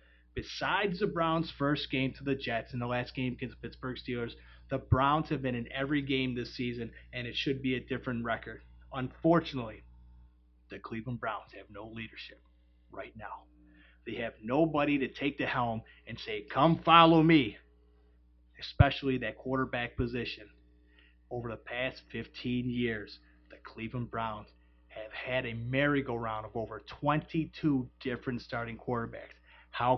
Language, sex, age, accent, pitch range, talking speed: English, male, 30-49, American, 110-140 Hz, 150 wpm